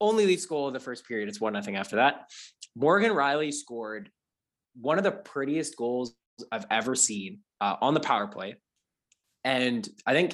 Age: 20-39